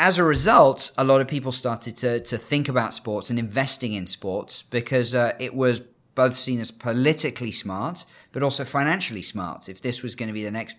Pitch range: 110-140 Hz